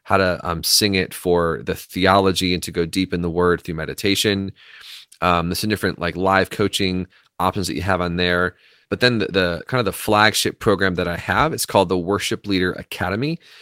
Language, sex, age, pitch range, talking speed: English, male, 30-49, 90-100 Hz, 210 wpm